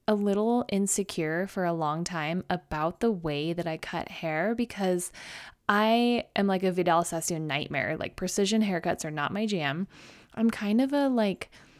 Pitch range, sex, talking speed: 170-215 Hz, female, 175 wpm